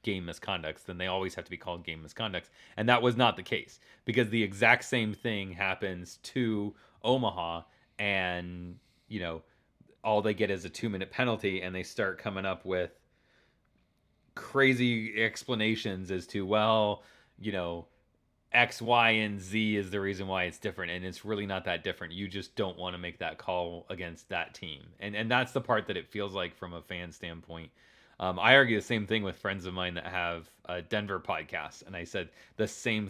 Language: English